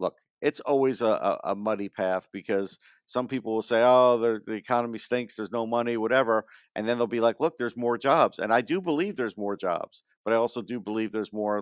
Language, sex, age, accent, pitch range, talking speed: English, male, 50-69, American, 100-120 Hz, 220 wpm